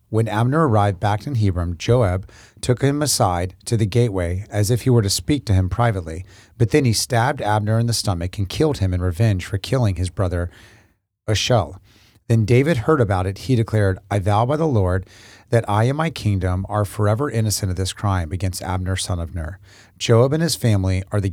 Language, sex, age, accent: English, male, 40-59, American